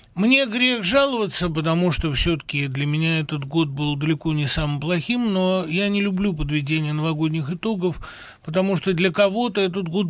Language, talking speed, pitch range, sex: Russian, 165 wpm, 140-190 Hz, male